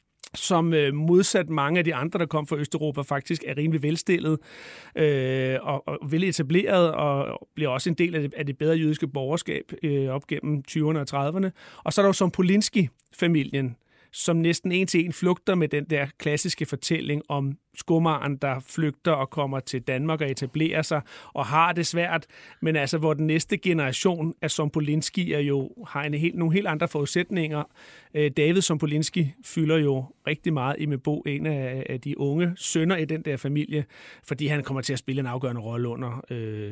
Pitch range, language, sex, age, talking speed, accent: 140-170 Hz, Danish, male, 30-49, 185 wpm, native